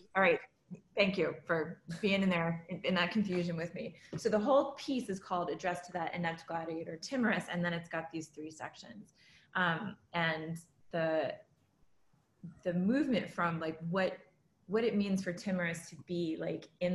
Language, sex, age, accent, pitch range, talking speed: English, female, 20-39, American, 160-190 Hz, 175 wpm